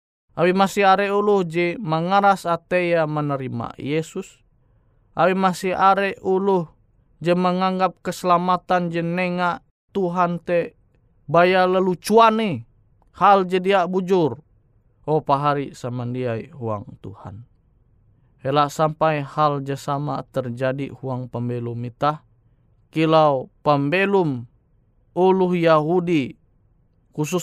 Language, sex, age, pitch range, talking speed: Indonesian, male, 20-39, 120-170 Hz, 95 wpm